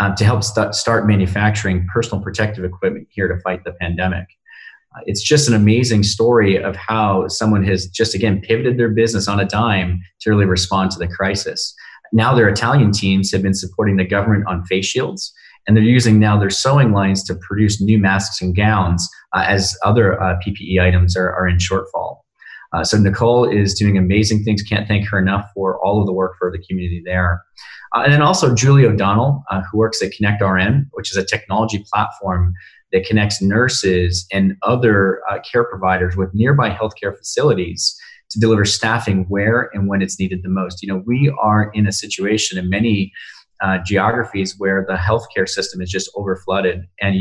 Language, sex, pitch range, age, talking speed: English, male, 95-110 Hz, 30-49, 190 wpm